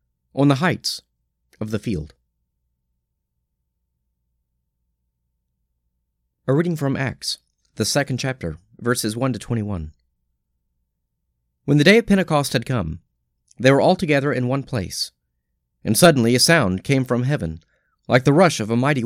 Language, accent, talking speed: English, American, 140 wpm